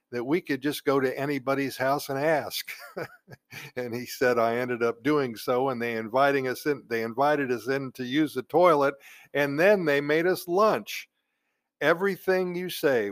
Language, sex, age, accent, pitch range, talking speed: English, male, 50-69, American, 115-145 Hz, 185 wpm